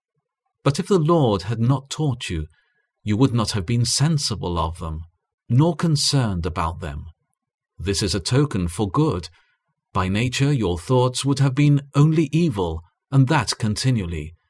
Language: English